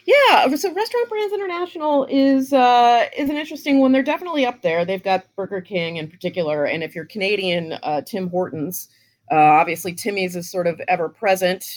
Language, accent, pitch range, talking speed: English, American, 175-250 Hz, 180 wpm